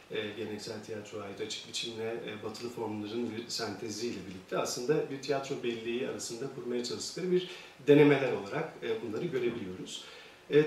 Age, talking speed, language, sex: 40-59, 130 wpm, Turkish, male